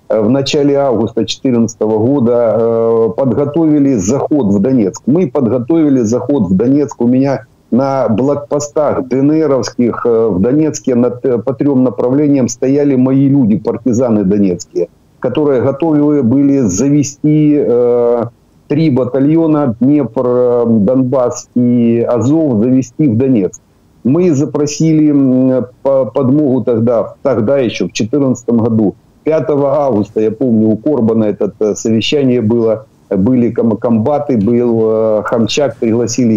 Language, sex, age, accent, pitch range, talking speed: Ukrainian, male, 50-69, native, 115-140 Hz, 120 wpm